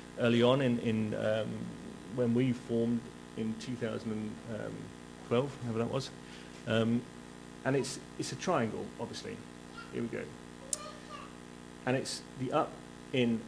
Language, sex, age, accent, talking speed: English, male, 40-59, British, 125 wpm